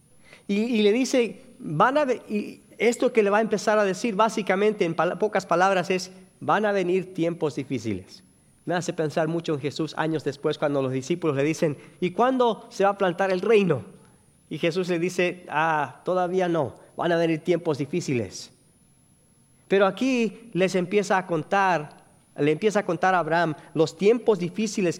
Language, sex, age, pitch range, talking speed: English, male, 40-59, 145-190 Hz, 170 wpm